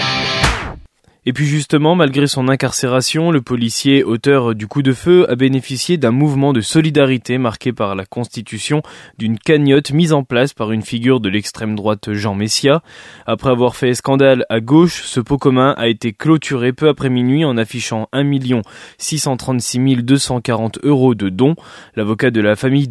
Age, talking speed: 20-39, 165 wpm